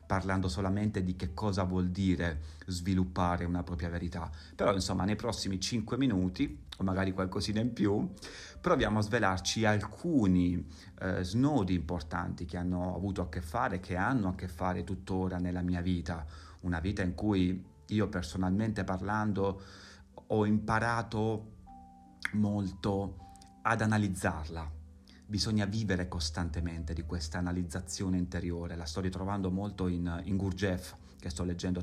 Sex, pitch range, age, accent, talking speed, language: male, 90-100 Hz, 30-49, native, 140 wpm, Italian